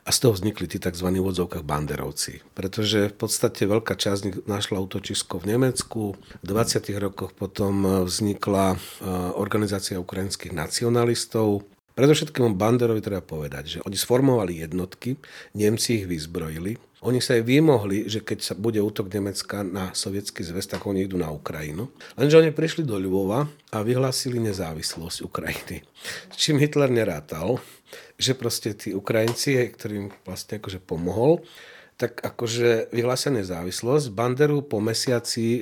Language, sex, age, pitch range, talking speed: Slovak, male, 40-59, 95-115 Hz, 140 wpm